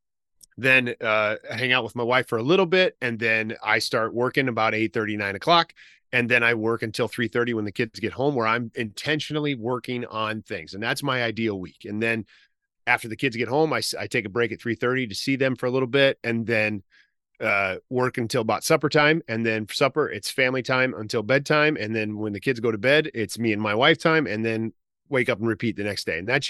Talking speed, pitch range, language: 240 wpm, 110-135 Hz, English